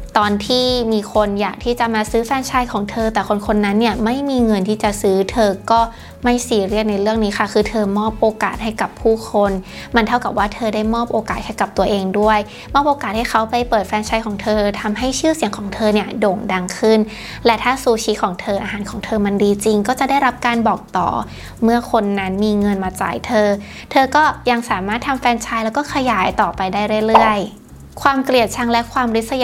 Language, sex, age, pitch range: Thai, female, 20-39, 205-235 Hz